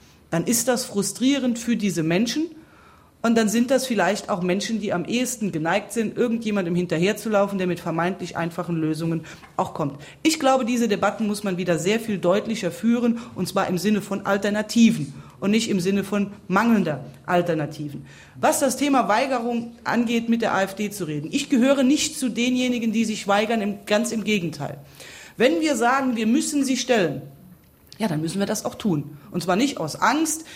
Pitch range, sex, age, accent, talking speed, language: 190-255 Hz, female, 30-49, German, 180 wpm, German